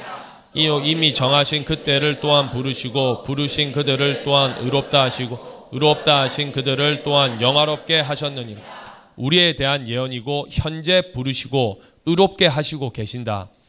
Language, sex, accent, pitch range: Korean, male, native, 130-165 Hz